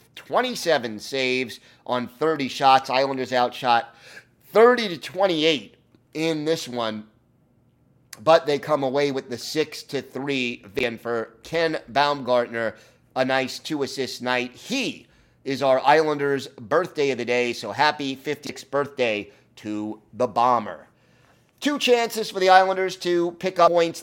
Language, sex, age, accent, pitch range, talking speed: English, male, 30-49, American, 125-160 Hz, 135 wpm